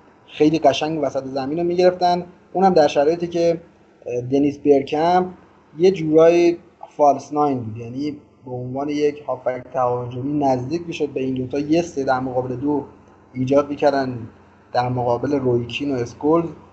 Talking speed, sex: 145 wpm, male